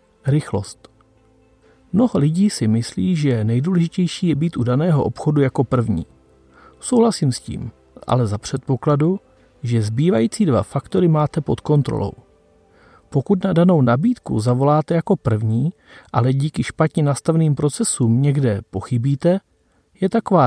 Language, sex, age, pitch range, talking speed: Czech, male, 40-59, 120-170 Hz, 125 wpm